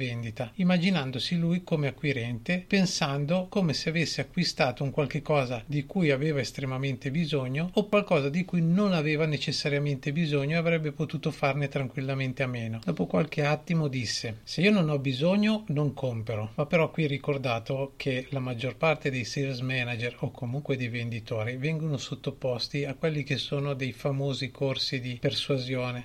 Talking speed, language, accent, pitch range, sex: 160 wpm, Italian, native, 130-155 Hz, male